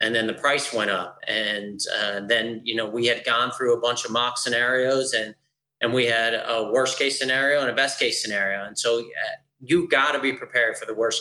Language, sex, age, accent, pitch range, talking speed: English, male, 30-49, American, 110-135 Hz, 235 wpm